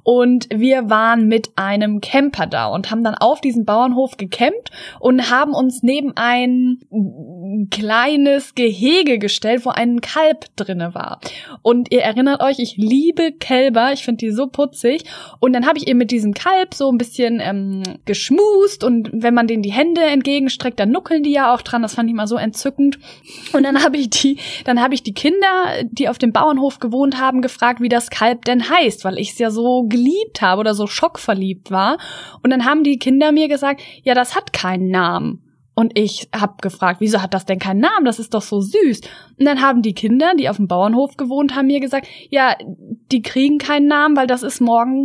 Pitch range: 220-275 Hz